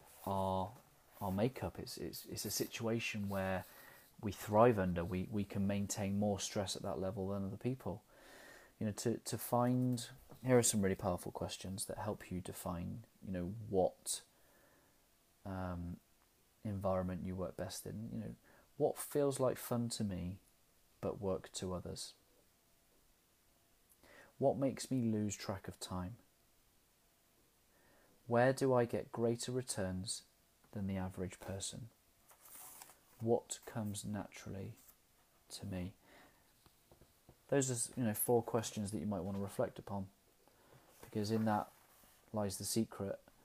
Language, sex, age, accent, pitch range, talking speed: English, male, 30-49, British, 95-120 Hz, 140 wpm